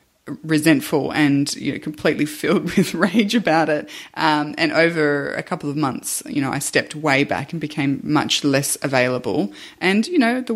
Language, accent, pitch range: English, Australian, 140-160 Hz